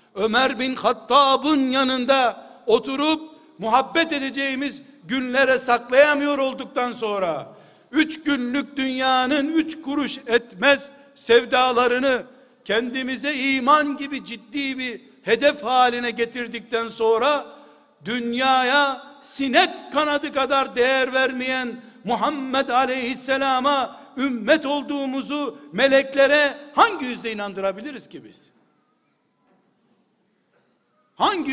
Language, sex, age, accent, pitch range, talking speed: Turkish, male, 60-79, native, 240-280 Hz, 85 wpm